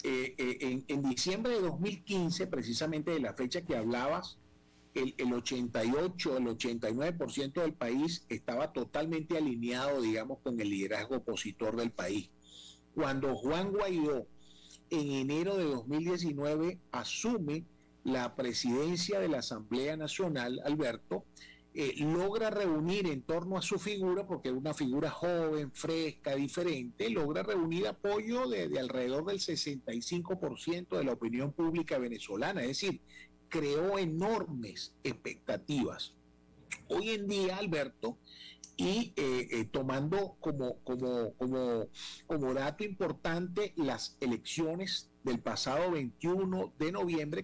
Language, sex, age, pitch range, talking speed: Spanish, male, 40-59, 120-175 Hz, 125 wpm